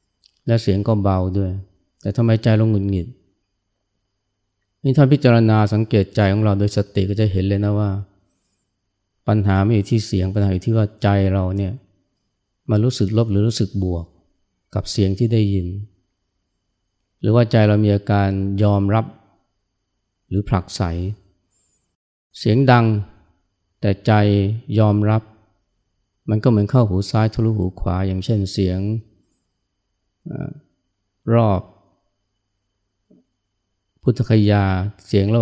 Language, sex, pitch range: Thai, male, 95-110 Hz